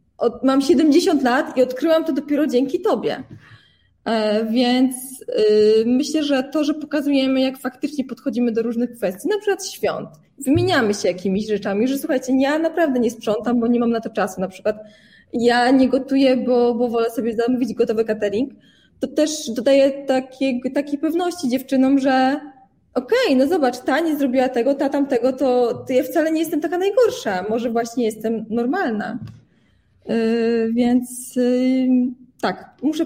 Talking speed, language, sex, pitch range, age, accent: 155 wpm, Polish, female, 230-280 Hz, 20-39, native